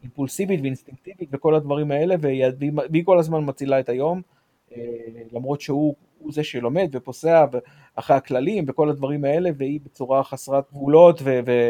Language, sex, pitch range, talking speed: Hebrew, male, 125-155 Hz, 165 wpm